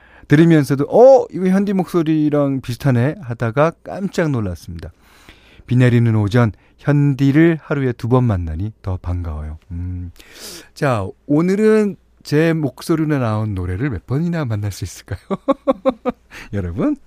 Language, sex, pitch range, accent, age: Korean, male, 90-150 Hz, native, 40-59